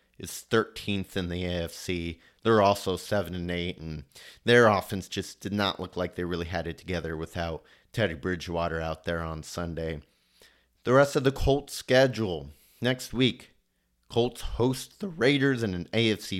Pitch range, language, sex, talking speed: 90-115 Hz, English, male, 165 wpm